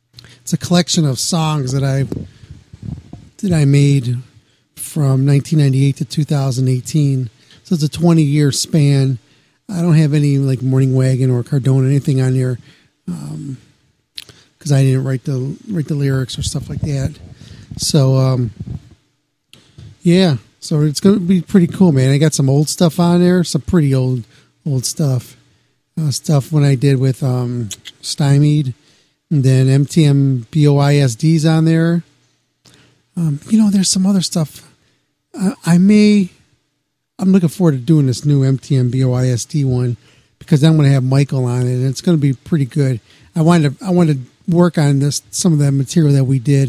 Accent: American